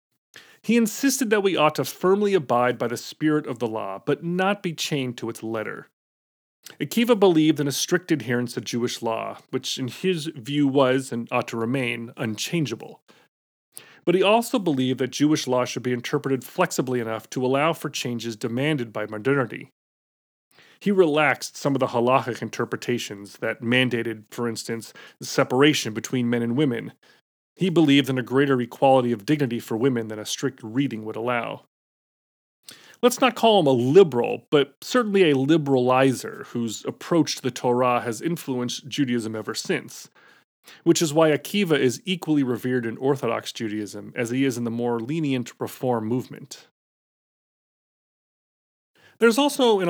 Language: English